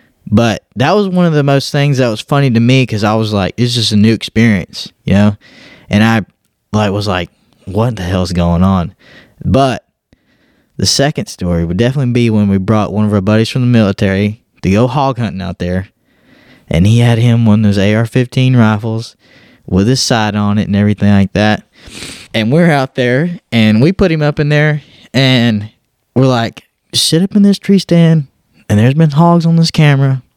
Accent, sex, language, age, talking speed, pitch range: American, male, English, 20-39, 205 wpm, 105-130 Hz